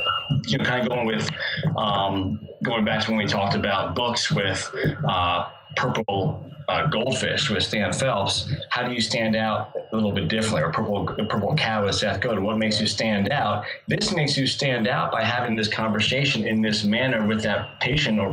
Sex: male